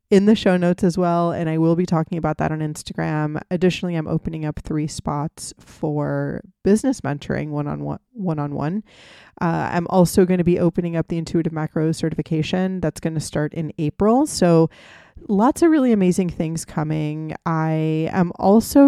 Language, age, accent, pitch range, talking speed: English, 20-39, American, 155-185 Hz, 170 wpm